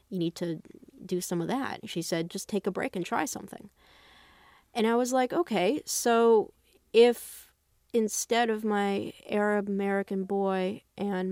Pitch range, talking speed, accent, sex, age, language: 170-210 Hz, 160 wpm, American, female, 30-49, English